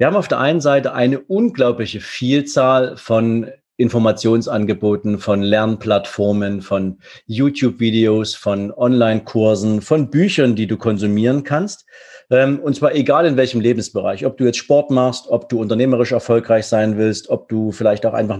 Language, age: German, 40-59